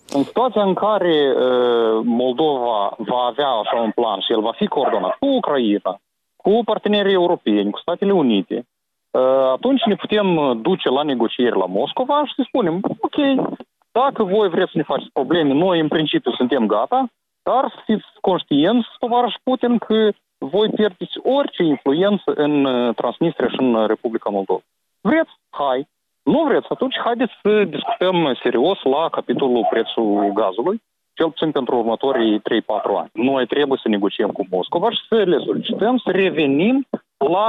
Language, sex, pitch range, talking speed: Romanian, male, 145-245 Hz, 155 wpm